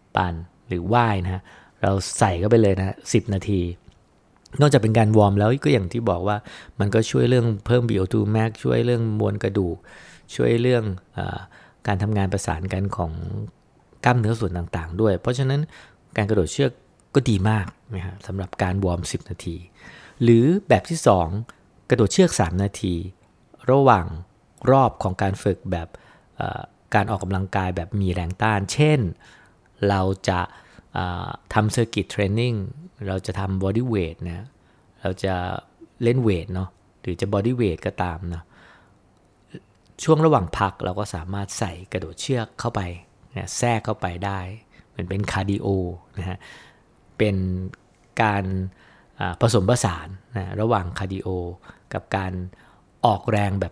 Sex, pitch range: male, 95-115 Hz